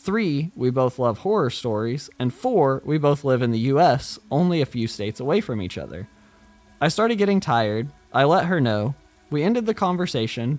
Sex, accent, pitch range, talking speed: male, American, 120-190 Hz, 195 wpm